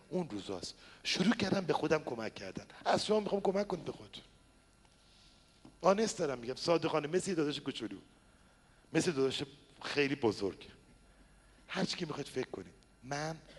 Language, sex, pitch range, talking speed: Persian, male, 150-225 Hz, 140 wpm